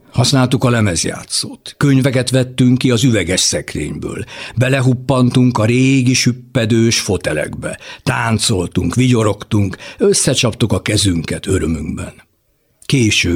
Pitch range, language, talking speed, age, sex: 100-130 Hz, Hungarian, 95 wpm, 60-79, male